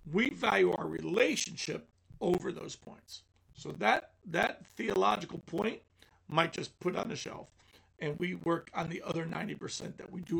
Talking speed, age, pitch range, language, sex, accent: 160 wpm, 50-69, 155-190 Hz, English, male, American